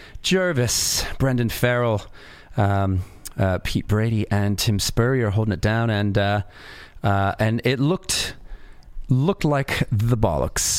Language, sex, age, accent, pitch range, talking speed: English, male, 30-49, American, 100-130 Hz, 135 wpm